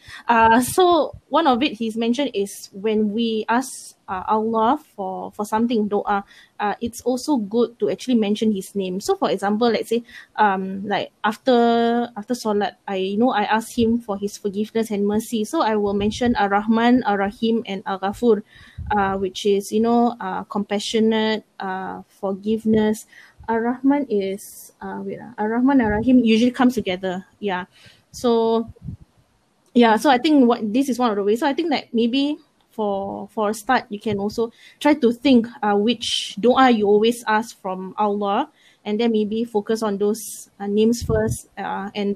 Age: 20-39